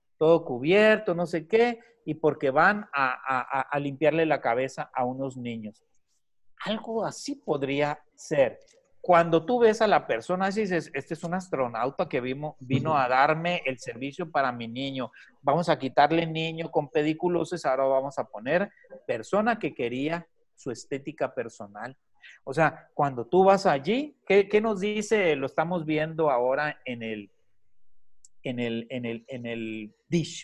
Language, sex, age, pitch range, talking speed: Spanish, male, 40-59, 140-195 Hz, 160 wpm